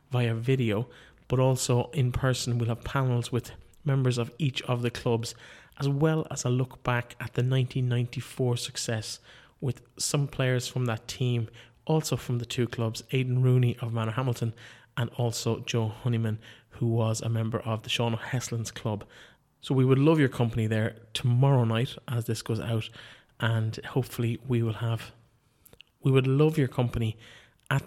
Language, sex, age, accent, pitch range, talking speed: English, male, 20-39, Irish, 115-130 Hz, 170 wpm